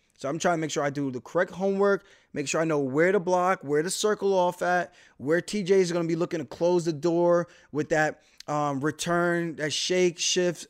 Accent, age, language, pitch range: American, 20-39, English, 140-170 Hz